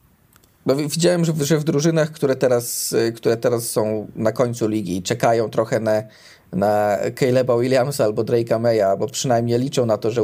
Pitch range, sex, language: 120-145 Hz, male, Polish